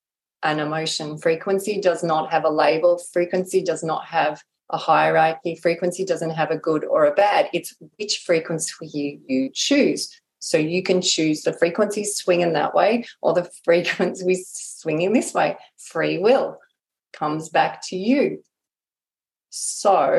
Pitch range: 160-200 Hz